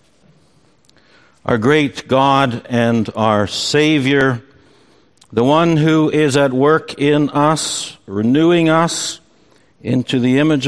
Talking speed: 105 wpm